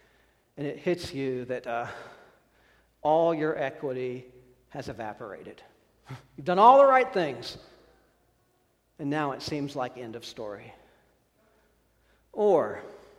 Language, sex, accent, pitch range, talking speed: English, male, American, 140-175 Hz, 120 wpm